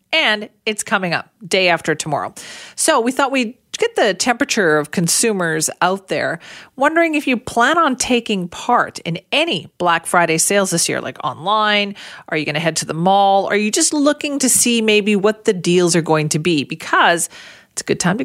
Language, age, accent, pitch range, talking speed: English, 40-59, American, 170-225 Hz, 205 wpm